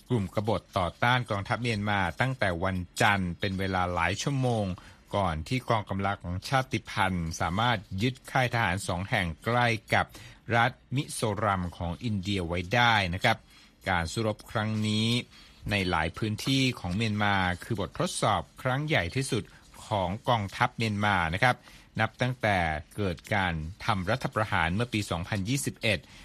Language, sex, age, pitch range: Thai, male, 60-79, 95-120 Hz